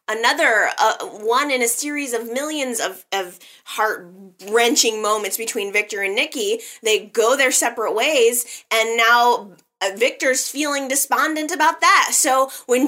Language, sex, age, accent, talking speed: English, female, 20-39, American, 140 wpm